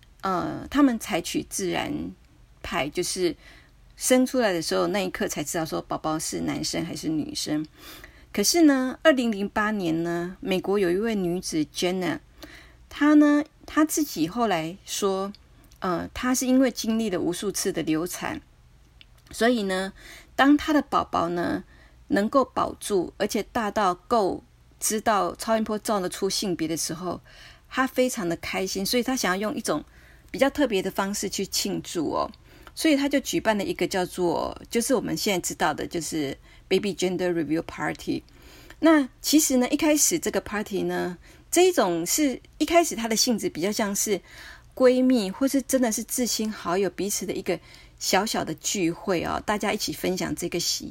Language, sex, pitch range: Chinese, female, 180-260 Hz